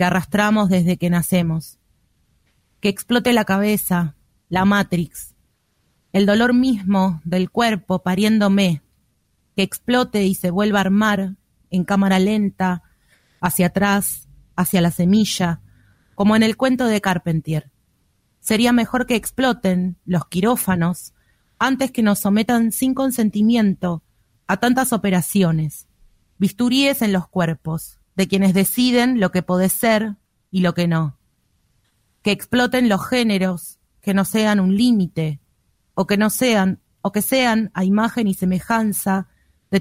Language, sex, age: Spanish, female, 30-49